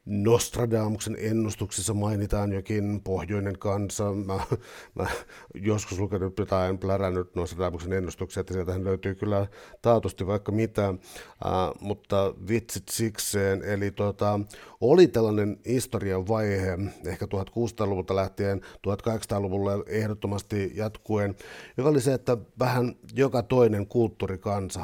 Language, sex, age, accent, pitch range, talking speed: Finnish, male, 60-79, native, 95-110 Hz, 110 wpm